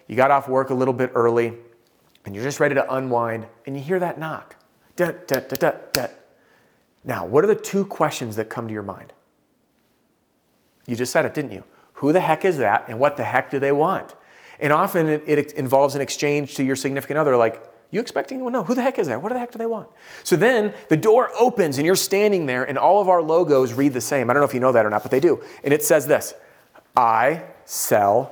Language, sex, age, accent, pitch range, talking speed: English, male, 40-59, American, 130-185 Hz, 235 wpm